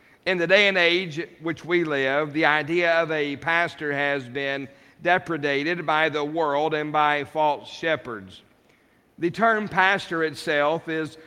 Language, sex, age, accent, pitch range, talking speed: English, male, 50-69, American, 145-170 Hz, 150 wpm